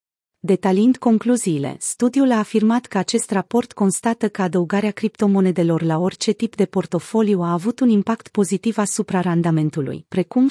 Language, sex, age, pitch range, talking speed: Romanian, female, 40-59, 180-225 Hz, 145 wpm